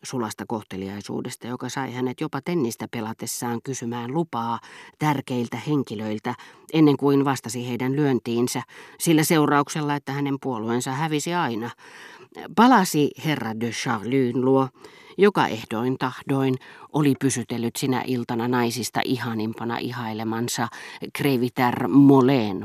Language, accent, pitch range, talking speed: Finnish, native, 120-150 Hz, 105 wpm